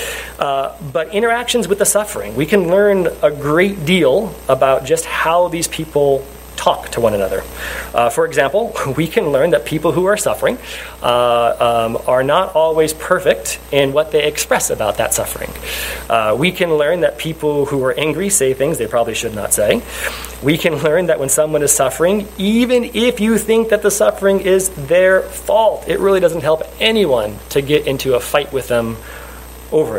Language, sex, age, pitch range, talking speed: English, male, 30-49, 125-195 Hz, 185 wpm